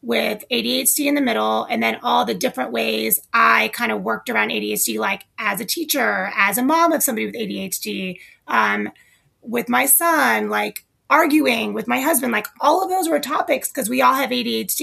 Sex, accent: female, American